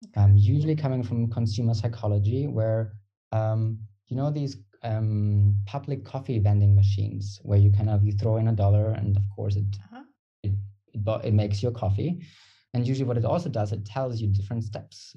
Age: 20-39